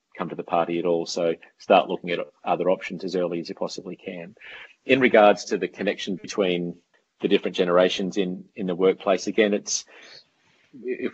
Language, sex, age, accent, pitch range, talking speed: English, male, 40-59, Australian, 85-95 Hz, 185 wpm